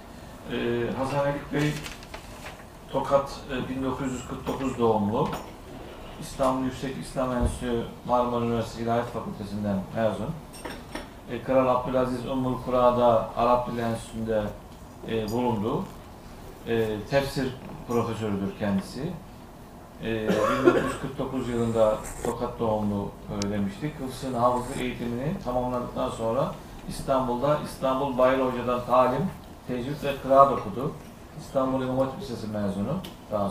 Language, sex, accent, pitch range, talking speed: Turkish, male, native, 115-135 Hz, 95 wpm